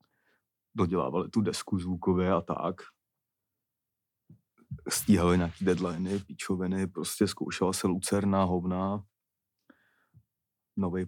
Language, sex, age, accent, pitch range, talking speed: Czech, male, 30-49, native, 90-105 Hz, 85 wpm